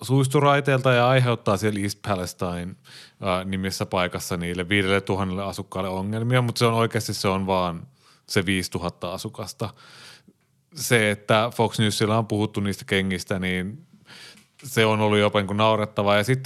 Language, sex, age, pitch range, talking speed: Finnish, male, 30-49, 95-115 Hz, 150 wpm